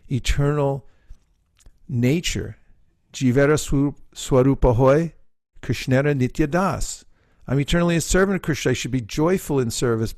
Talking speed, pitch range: 85 wpm, 115-145 Hz